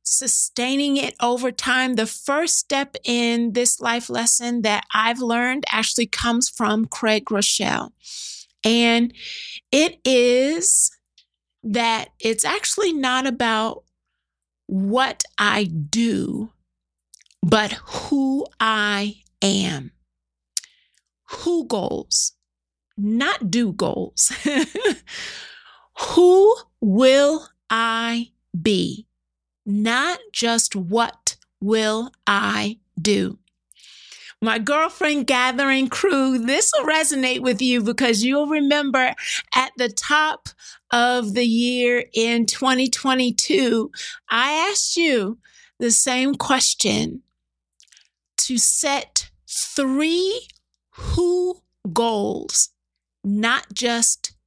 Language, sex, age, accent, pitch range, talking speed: English, female, 40-59, American, 215-275 Hz, 90 wpm